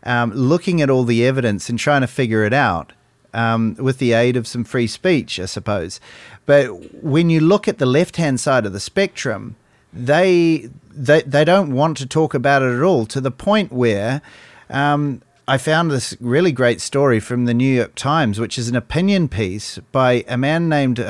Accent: Australian